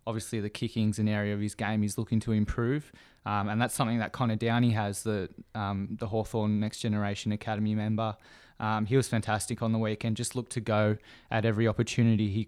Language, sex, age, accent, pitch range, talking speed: English, male, 20-39, Australian, 100-115 Hz, 205 wpm